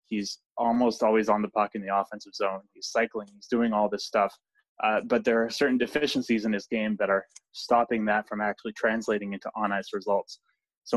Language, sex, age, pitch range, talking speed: English, male, 20-39, 105-115 Hz, 200 wpm